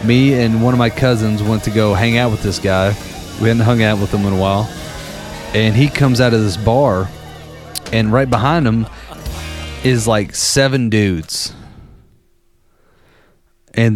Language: English